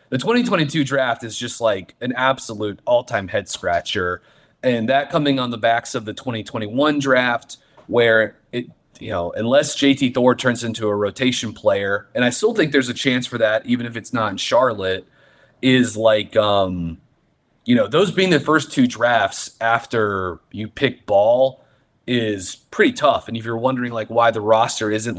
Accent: American